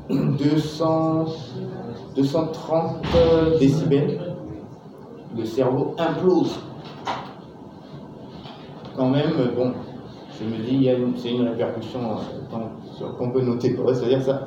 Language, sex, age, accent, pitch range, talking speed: French, male, 30-49, French, 125-145 Hz, 105 wpm